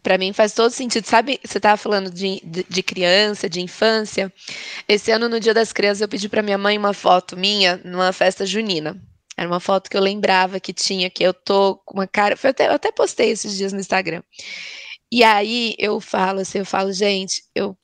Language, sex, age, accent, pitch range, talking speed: Portuguese, female, 10-29, Brazilian, 195-235 Hz, 215 wpm